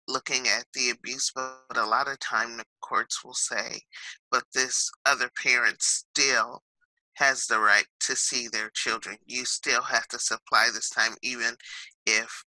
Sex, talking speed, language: male, 165 wpm, English